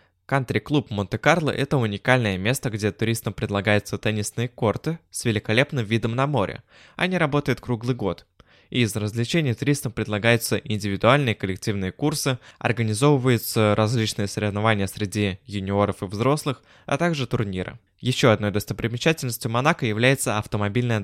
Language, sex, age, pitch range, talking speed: Russian, male, 20-39, 105-130 Hz, 125 wpm